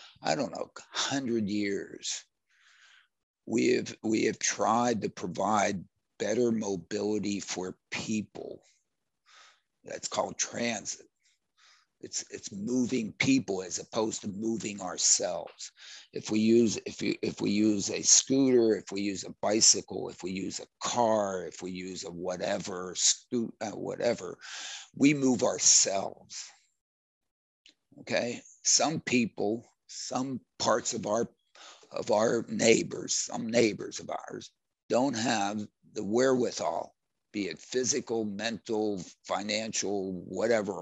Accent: American